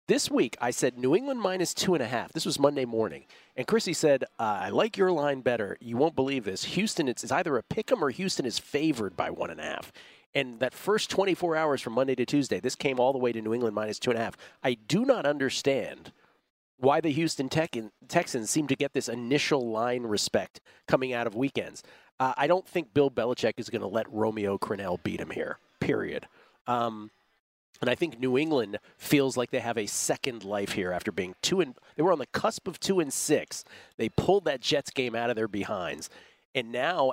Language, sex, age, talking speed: English, male, 40-59, 225 wpm